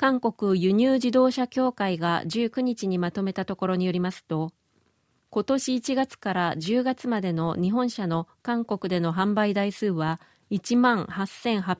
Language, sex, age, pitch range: Japanese, female, 40-59, 180-230 Hz